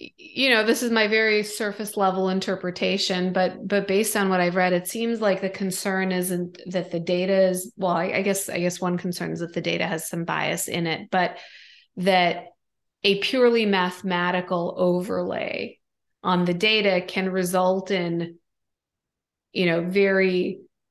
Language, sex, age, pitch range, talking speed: English, female, 20-39, 175-195 Hz, 165 wpm